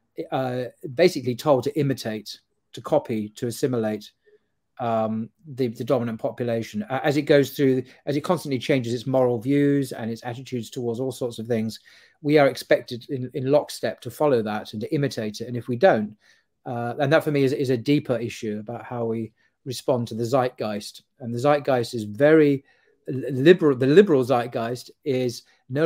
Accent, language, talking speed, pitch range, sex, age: British, English, 185 wpm, 115-145 Hz, male, 40-59